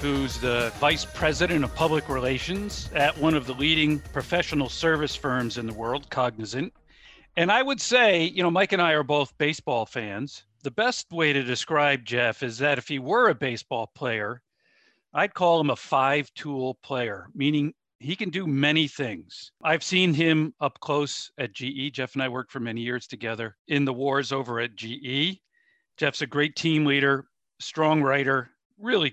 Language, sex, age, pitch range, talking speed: English, male, 50-69, 125-155 Hz, 180 wpm